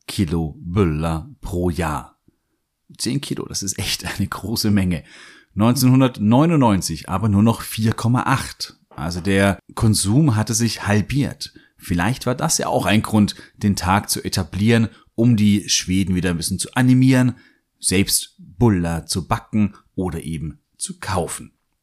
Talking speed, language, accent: 135 wpm, German, German